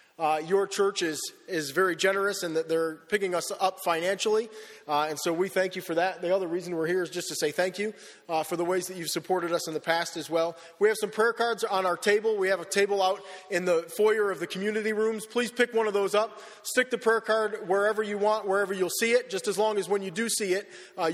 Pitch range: 170-210 Hz